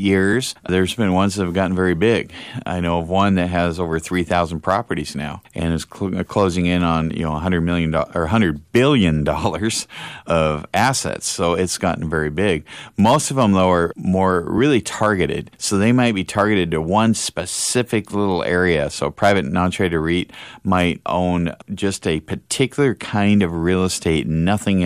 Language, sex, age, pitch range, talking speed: English, male, 40-59, 85-105 Hz, 175 wpm